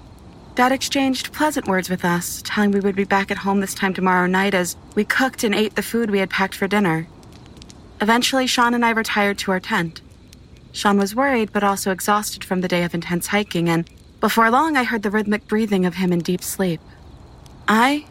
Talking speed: 210 wpm